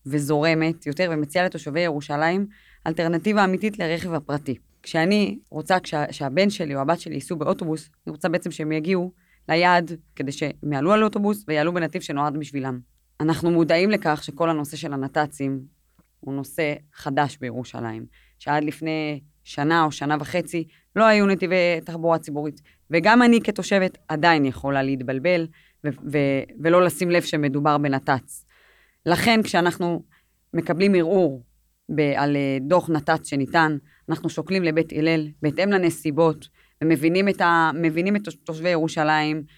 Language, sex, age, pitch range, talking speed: Hebrew, female, 20-39, 150-180 Hz, 135 wpm